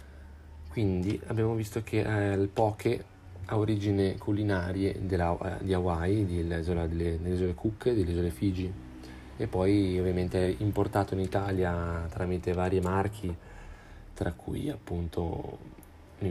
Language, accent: Italian, native